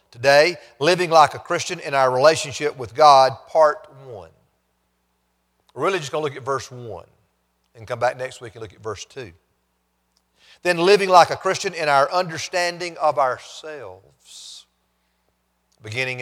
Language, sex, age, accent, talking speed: English, male, 40-59, American, 155 wpm